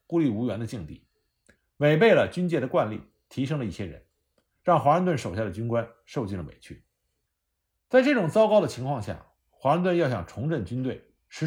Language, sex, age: Chinese, male, 50-69